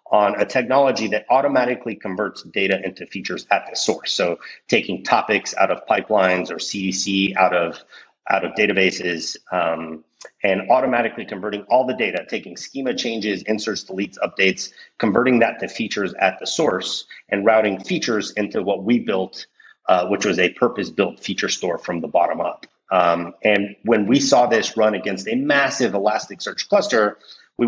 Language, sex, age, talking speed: English, male, 30-49, 165 wpm